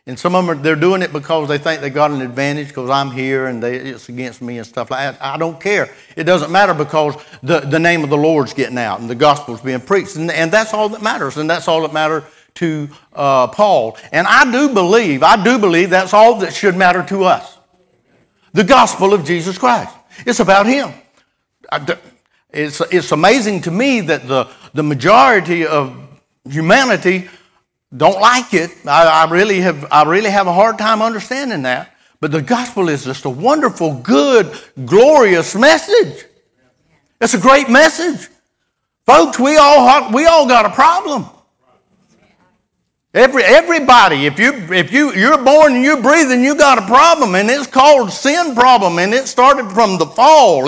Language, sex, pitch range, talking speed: English, male, 155-250 Hz, 185 wpm